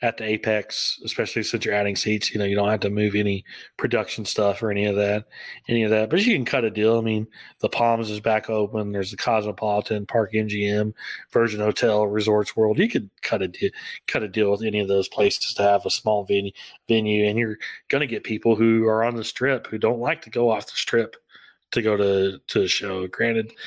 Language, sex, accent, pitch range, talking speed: English, male, American, 100-110 Hz, 230 wpm